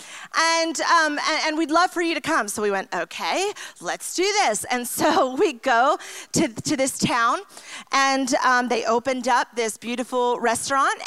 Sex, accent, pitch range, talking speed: female, American, 230-310 Hz, 180 wpm